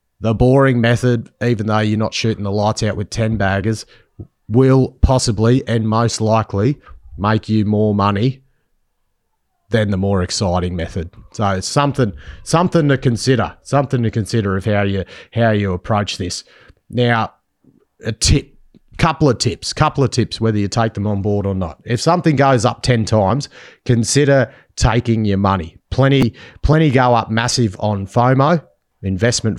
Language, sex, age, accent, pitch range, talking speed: English, male, 30-49, Australian, 100-125 Hz, 160 wpm